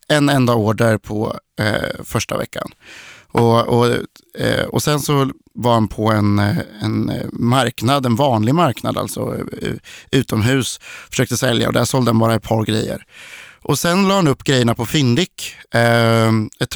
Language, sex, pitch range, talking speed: Swedish, male, 110-135 Hz, 155 wpm